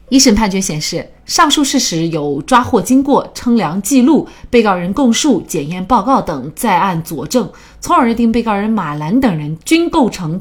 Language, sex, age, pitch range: Chinese, female, 30-49, 170-255 Hz